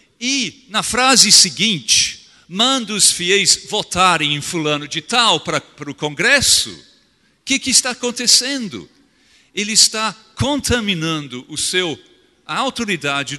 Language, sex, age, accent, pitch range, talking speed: Portuguese, male, 50-69, Brazilian, 155-220 Hz, 120 wpm